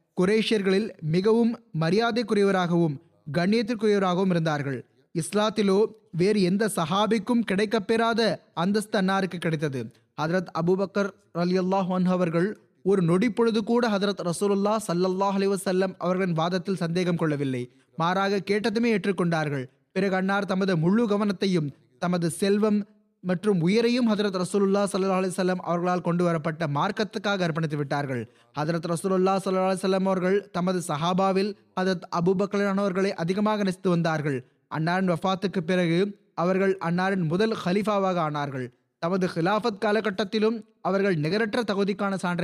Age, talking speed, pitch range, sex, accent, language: 20-39, 100 wpm, 170-200 Hz, male, native, Tamil